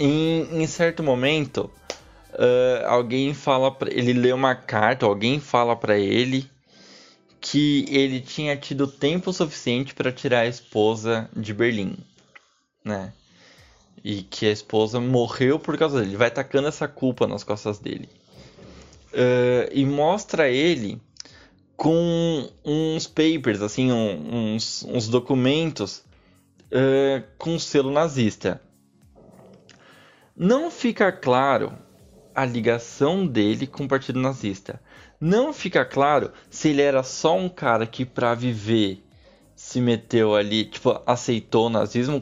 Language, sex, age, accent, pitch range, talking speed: Portuguese, male, 20-39, Brazilian, 110-150 Hz, 130 wpm